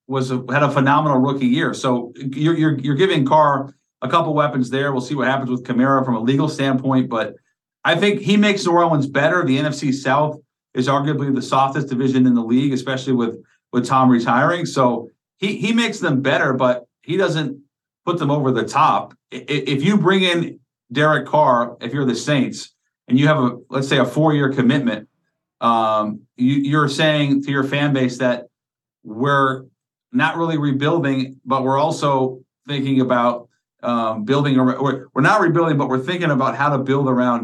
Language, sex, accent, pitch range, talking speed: English, male, American, 125-150 Hz, 185 wpm